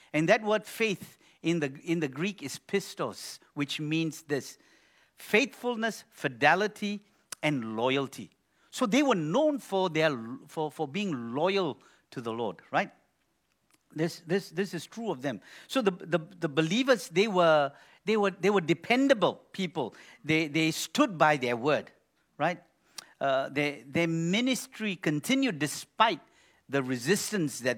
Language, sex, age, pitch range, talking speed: English, male, 50-69, 125-185 Hz, 145 wpm